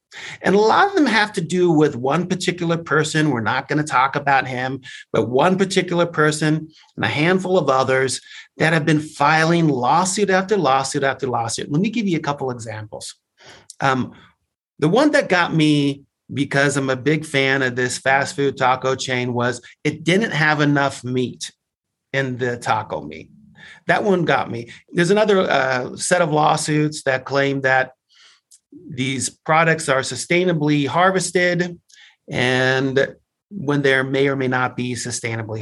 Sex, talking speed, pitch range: male, 165 wpm, 130-165 Hz